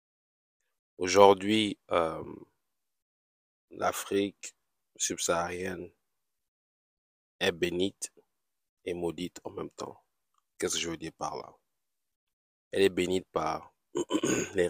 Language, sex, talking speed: French, male, 95 wpm